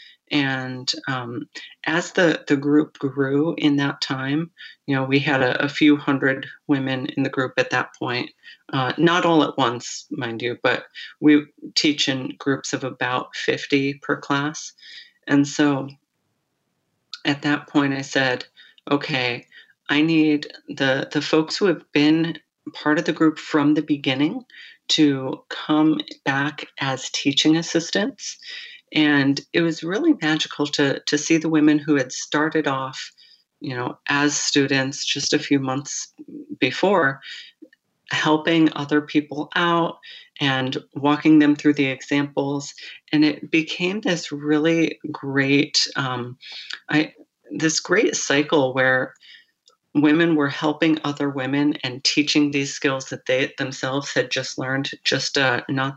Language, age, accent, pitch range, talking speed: English, 40-59, American, 135-160 Hz, 145 wpm